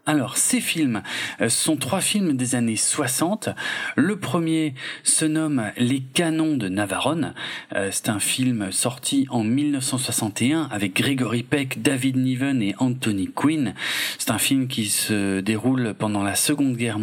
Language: French